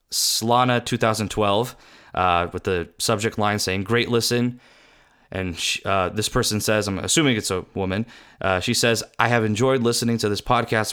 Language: English